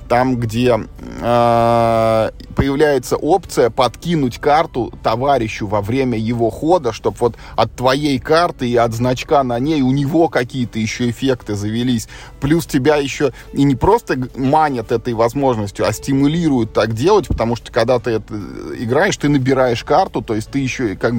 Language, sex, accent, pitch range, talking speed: Russian, male, native, 110-135 Hz, 155 wpm